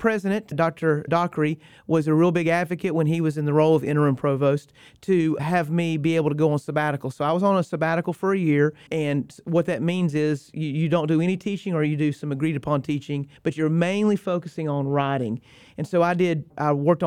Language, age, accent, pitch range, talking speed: English, 40-59, American, 150-175 Hz, 230 wpm